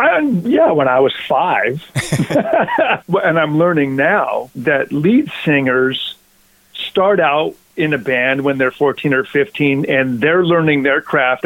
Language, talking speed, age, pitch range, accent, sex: English, 145 wpm, 50-69, 130-165 Hz, American, male